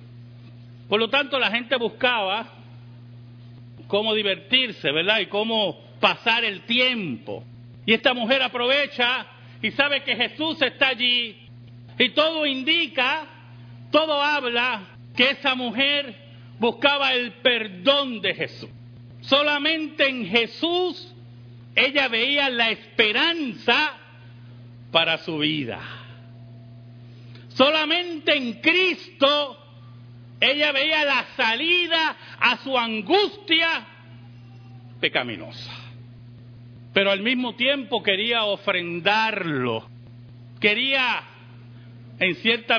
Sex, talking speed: male, 95 wpm